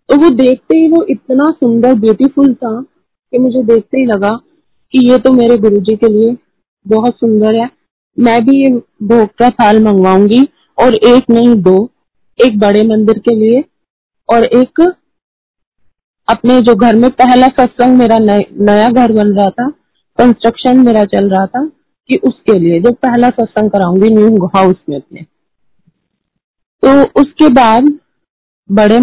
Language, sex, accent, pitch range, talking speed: Hindi, female, native, 210-255 Hz, 155 wpm